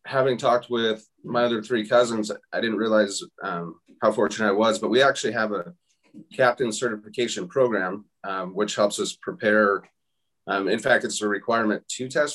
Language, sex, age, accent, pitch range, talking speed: English, male, 30-49, American, 105-125 Hz, 175 wpm